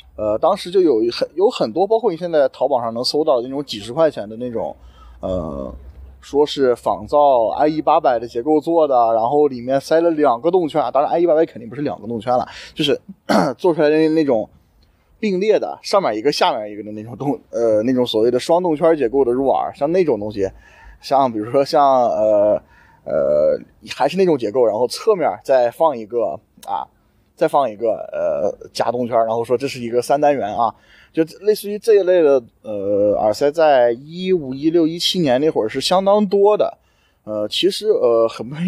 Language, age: Chinese, 20-39